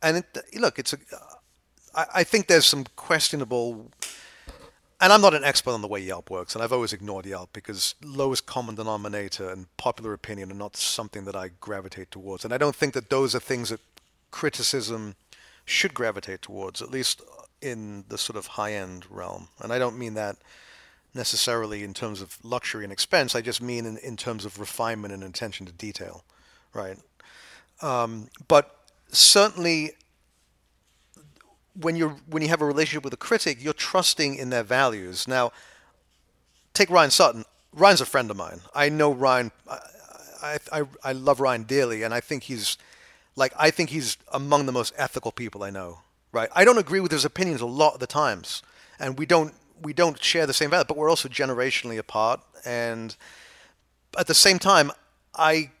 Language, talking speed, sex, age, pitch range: English, 185 wpm, male, 40-59, 105-150 Hz